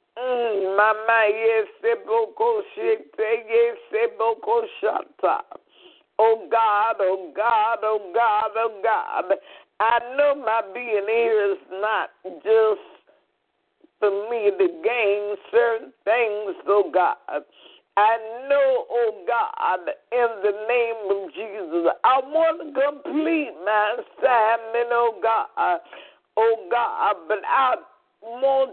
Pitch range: 210-300 Hz